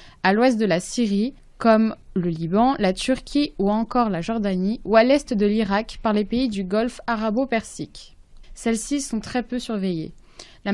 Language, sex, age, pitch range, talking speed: French, female, 20-39, 205-250 Hz, 175 wpm